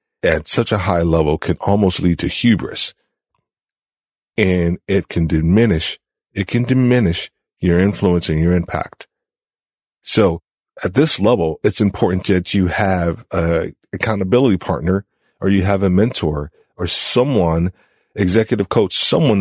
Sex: male